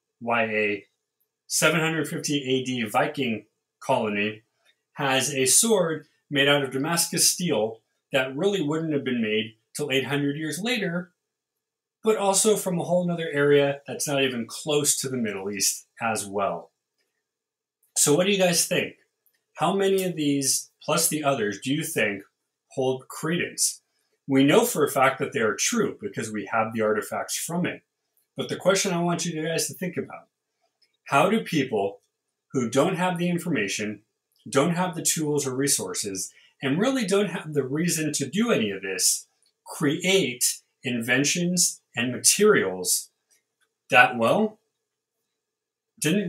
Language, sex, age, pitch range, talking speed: English, male, 30-49, 125-185 Hz, 150 wpm